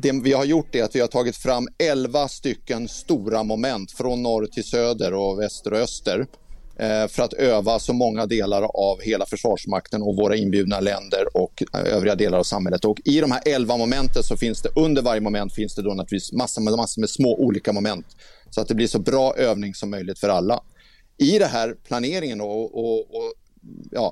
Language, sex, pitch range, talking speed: Swedish, male, 105-130 Hz, 195 wpm